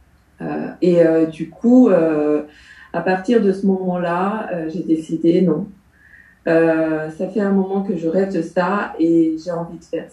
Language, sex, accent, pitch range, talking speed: English, female, French, 165-195 Hz, 170 wpm